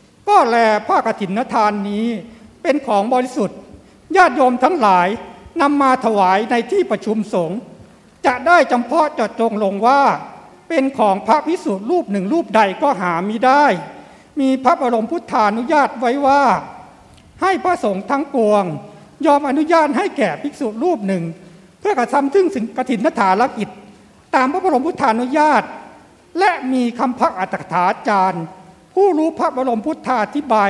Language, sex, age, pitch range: Thai, male, 60-79, 210-290 Hz